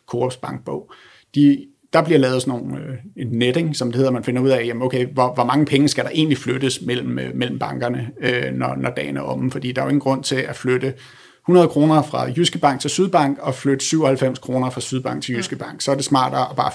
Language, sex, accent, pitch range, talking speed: Danish, male, native, 130-150 Hz, 245 wpm